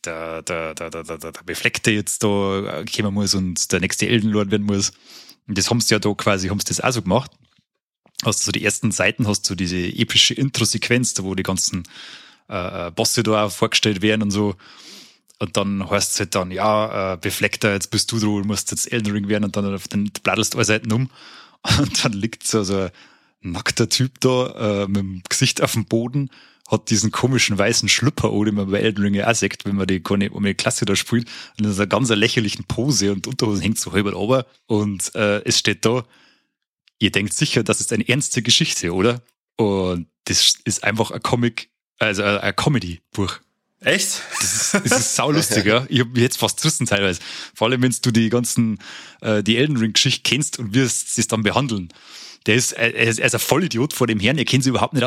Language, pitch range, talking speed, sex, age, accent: German, 100-120 Hz, 210 wpm, male, 30-49, German